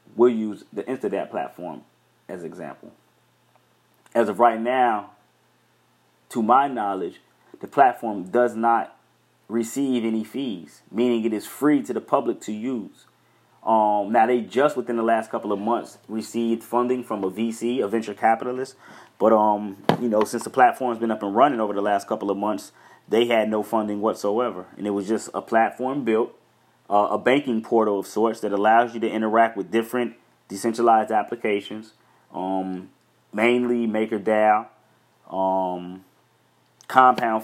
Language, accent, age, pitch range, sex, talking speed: English, American, 30-49, 105-120 Hz, male, 155 wpm